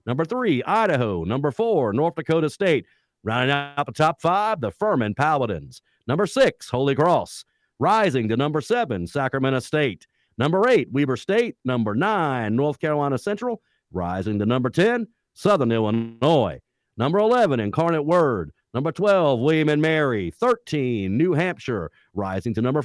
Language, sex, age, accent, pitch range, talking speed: English, male, 50-69, American, 115-170 Hz, 145 wpm